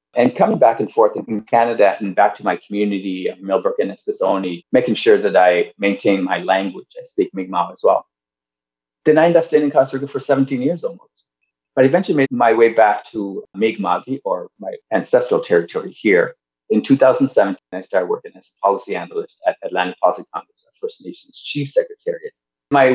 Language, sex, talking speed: English, male, 190 wpm